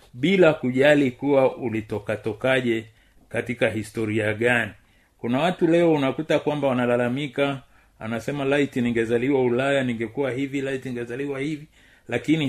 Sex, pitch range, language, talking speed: male, 120-160 Hz, Swahili, 110 wpm